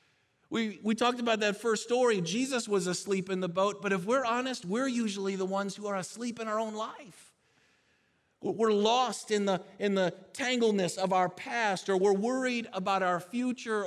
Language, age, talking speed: English, 40-59, 190 wpm